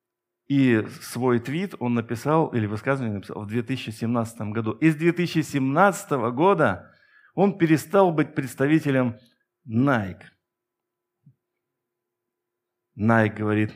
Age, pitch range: 50-69, 110-145 Hz